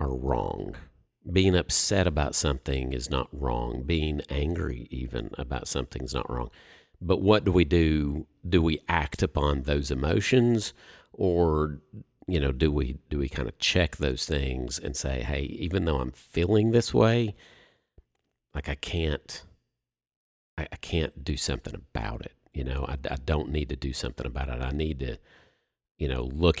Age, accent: 50-69, American